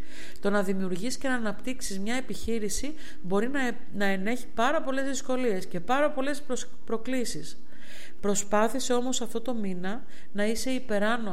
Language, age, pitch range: Greek, 50-69, 180-245 Hz